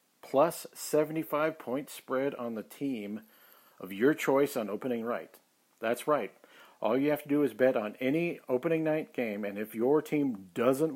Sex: male